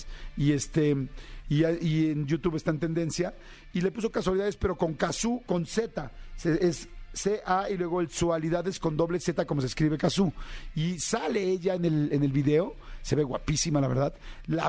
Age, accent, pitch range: 50-69, Mexican, 145-185 Hz